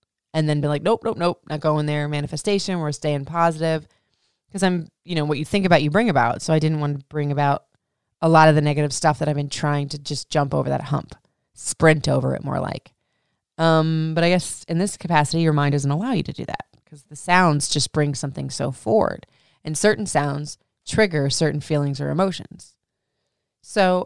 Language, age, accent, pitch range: English, 30-49, American, 145-170 Hz